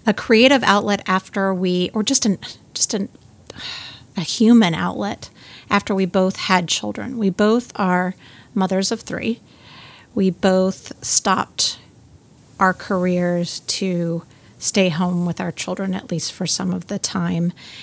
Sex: female